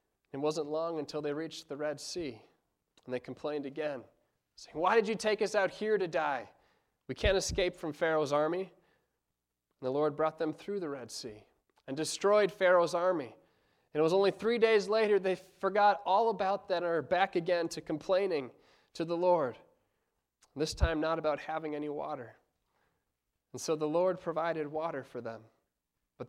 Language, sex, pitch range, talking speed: English, male, 145-195 Hz, 180 wpm